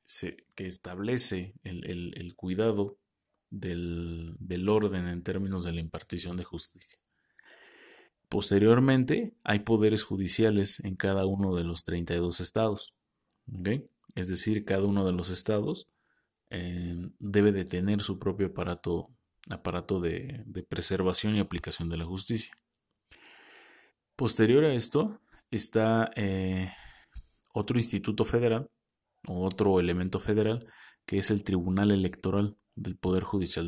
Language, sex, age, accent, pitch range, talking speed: Spanish, male, 30-49, Mexican, 90-110 Hz, 125 wpm